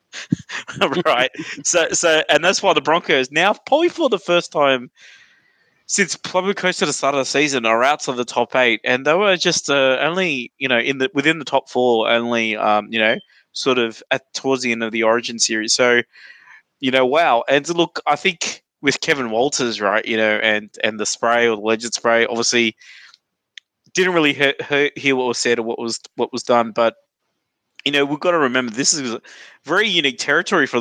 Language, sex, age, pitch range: English, male, 20-39, 115-140 Hz